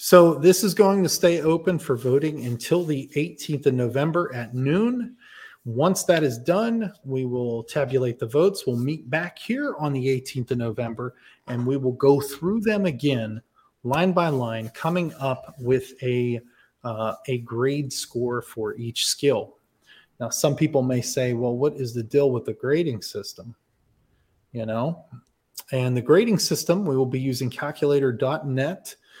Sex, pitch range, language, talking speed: male, 125-160 Hz, English, 165 wpm